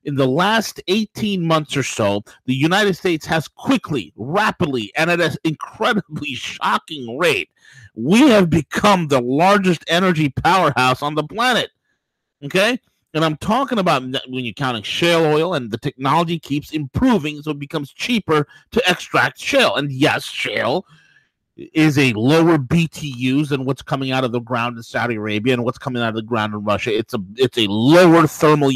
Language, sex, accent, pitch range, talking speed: English, male, American, 135-205 Hz, 175 wpm